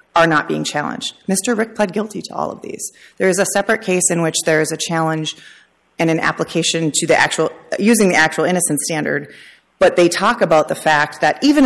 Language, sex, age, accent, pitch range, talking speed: English, female, 30-49, American, 155-190 Hz, 215 wpm